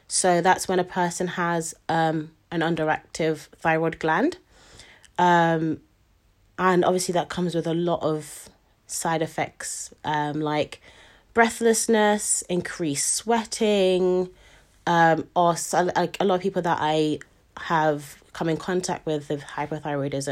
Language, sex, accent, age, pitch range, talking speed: English, female, British, 20-39, 155-185 Hz, 130 wpm